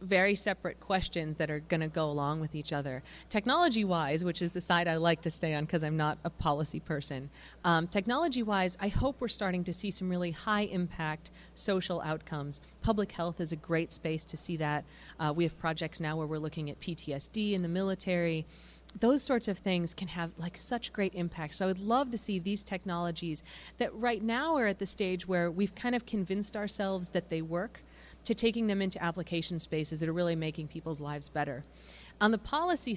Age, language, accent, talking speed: 30-49, English, American, 205 wpm